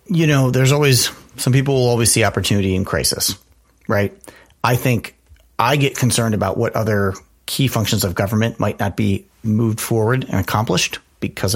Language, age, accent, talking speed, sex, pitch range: English, 30-49, American, 170 wpm, male, 95-115 Hz